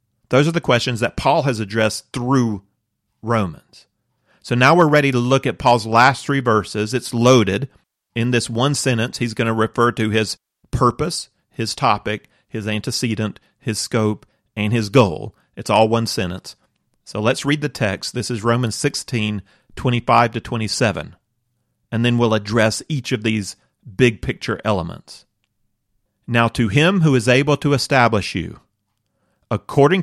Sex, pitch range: male, 105-130 Hz